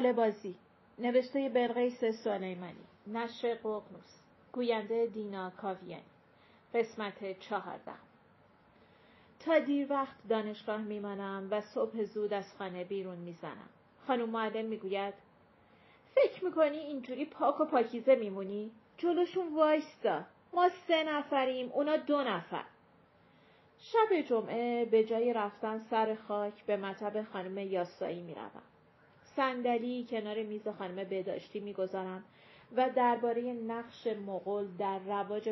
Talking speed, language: 105 wpm, Persian